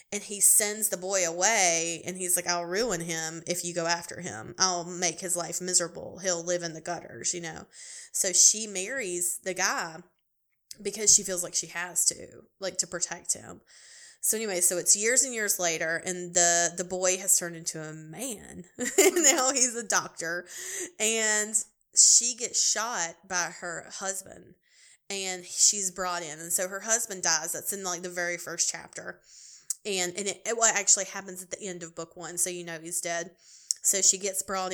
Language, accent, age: English, American, 20-39